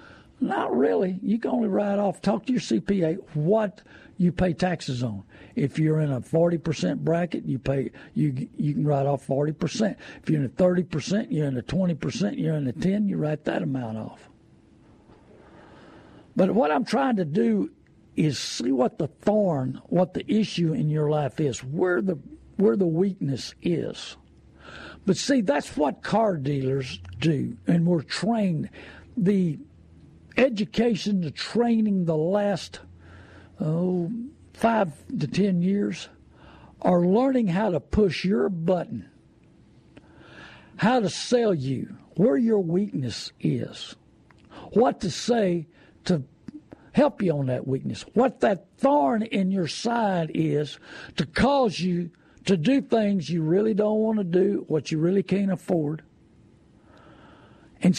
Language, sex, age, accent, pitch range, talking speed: English, male, 60-79, American, 150-205 Hz, 160 wpm